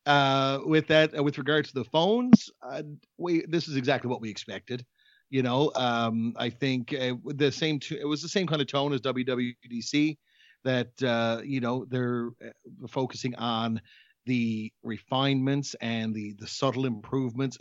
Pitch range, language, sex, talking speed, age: 125-150 Hz, English, male, 165 wpm, 40-59